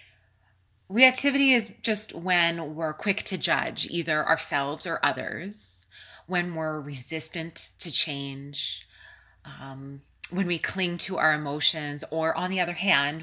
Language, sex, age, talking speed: English, female, 20-39, 130 wpm